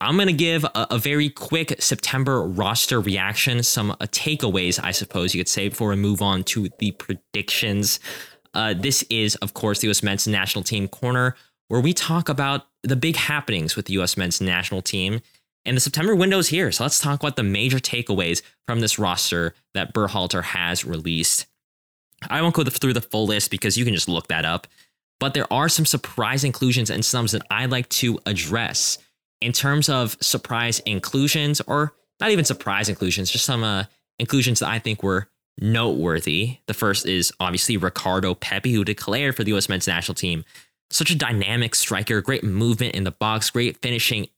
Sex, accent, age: male, American, 20-39